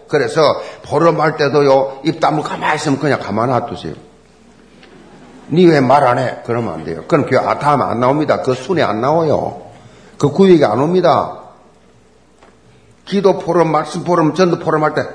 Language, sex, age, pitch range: Korean, male, 50-69, 140-205 Hz